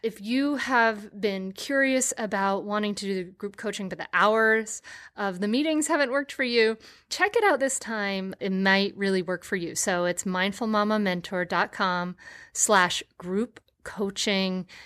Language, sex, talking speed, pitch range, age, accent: English, female, 155 wpm, 190-240 Hz, 30-49, American